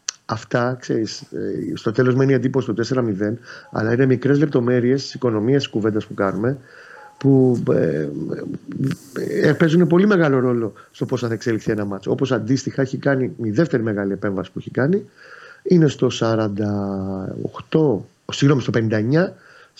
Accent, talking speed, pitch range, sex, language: native, 150 wpm, 110-150 Hz, male, Greek